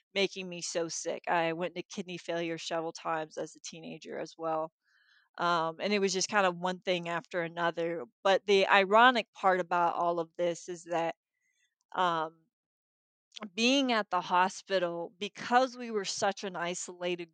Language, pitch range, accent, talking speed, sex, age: English, 175-210 Hz, American, 165 wpm, female, 20-39